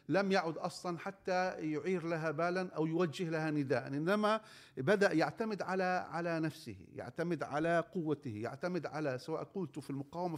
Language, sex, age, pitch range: Arabic, male, 50-69, 145-195 Hz